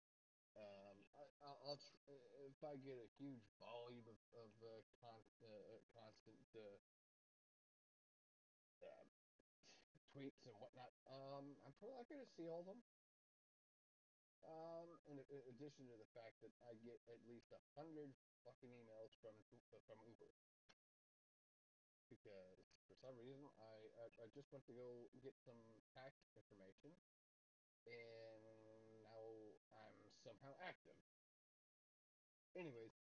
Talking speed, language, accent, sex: 120 wpm, English, American, male